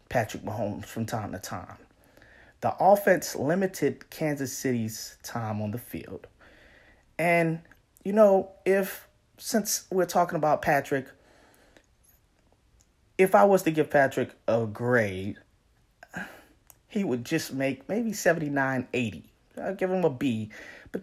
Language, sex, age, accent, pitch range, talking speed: English, male, 30-49, American, 110-165 Hz, 130 wpm